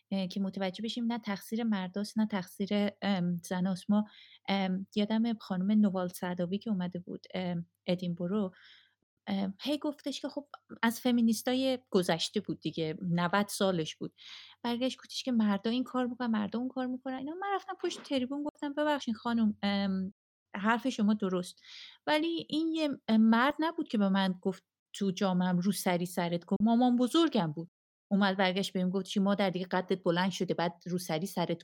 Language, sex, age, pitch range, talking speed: Persian, female, 30-49, 180-245 Hz, 155 wpm